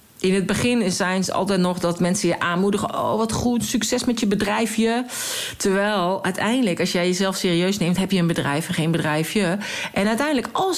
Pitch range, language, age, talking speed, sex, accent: 170-220 Hz, Dutch, 50-69, 195 wpm, female, Dutch